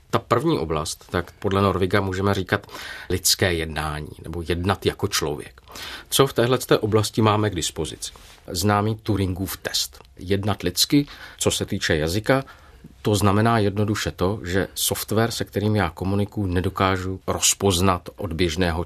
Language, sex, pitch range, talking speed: Czech, male, 90-105 Hz, 140 wpm